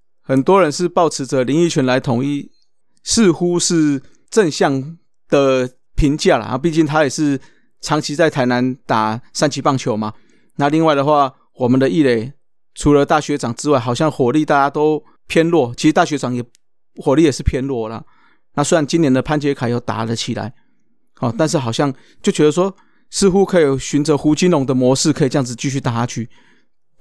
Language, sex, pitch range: Chinese, male, 130-165 Hz